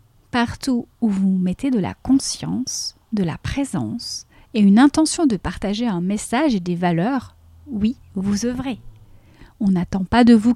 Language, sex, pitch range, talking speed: French, female, 195-250 Hz, 160 wpm